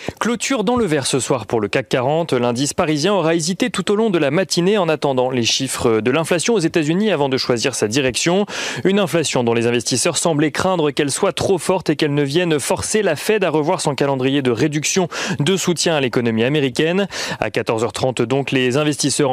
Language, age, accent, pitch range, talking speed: French, 30-49, French, 130-170 Hz, 210 wpm